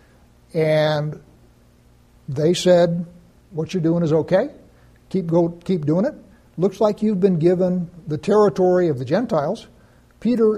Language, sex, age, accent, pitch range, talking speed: English, male, 60-79, American, 155-195 Hz, 135 wpm